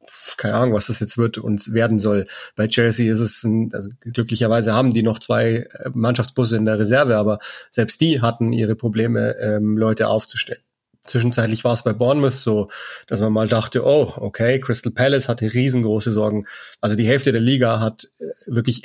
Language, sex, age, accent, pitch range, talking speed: German, male, 30-49, German, 110-120 Hz, 180 wpm